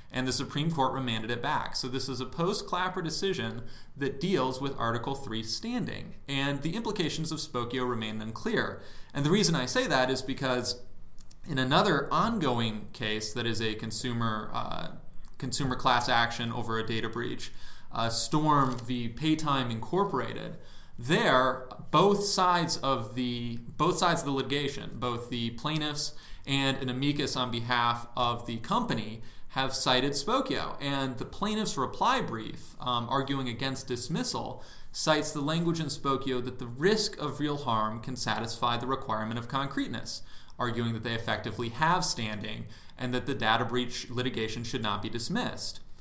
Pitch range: 115-145 Hz